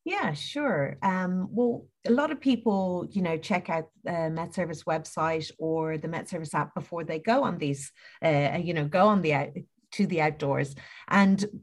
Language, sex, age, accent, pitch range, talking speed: English, female, 30-49, Irish, 160-225 Hz, 195 wpm